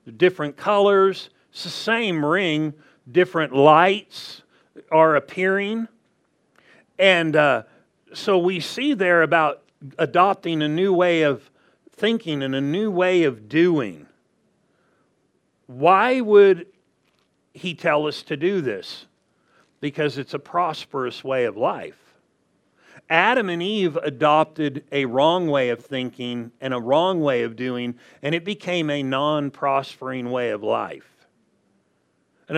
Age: 50-69